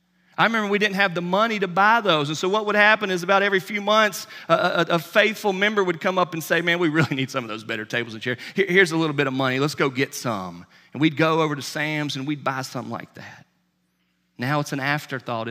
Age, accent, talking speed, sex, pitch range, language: 40-59, American, 260 wpm, male, 130-180 Hz, English